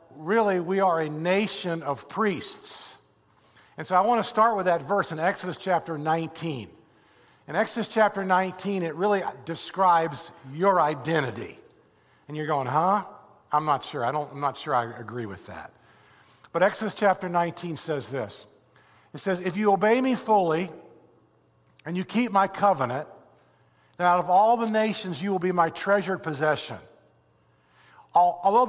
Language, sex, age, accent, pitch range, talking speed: English, male, 60-79, American, 155-205 Hz, 160 wpm